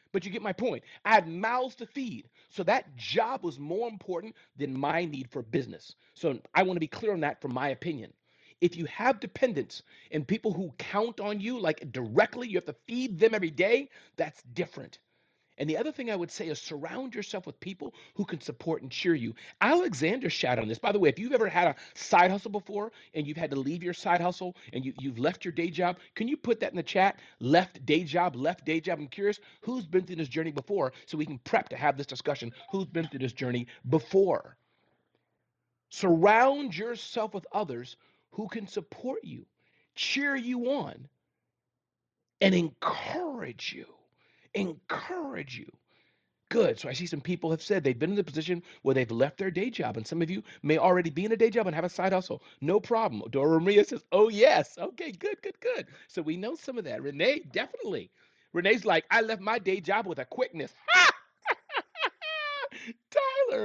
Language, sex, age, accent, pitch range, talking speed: English, male, 40-59, American, 160-225 Hz, 205 wpm